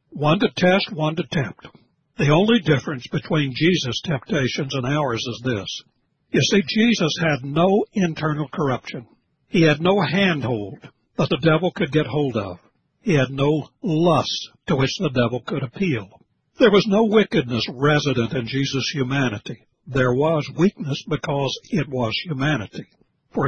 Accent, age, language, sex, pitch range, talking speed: American, 60-79, English, male, 130-180 Hz, 155 wpm